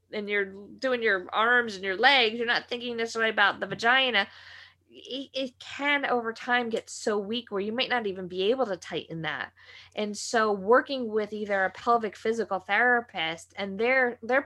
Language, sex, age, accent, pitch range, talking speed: English, female, 20-39, American, 195-245 Hz, 190 wpm